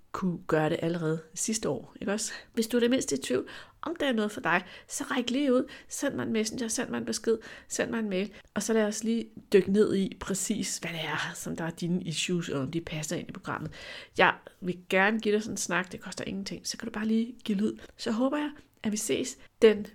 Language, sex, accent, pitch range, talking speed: Danish, female, native, 175-225 Hz, 260 wpm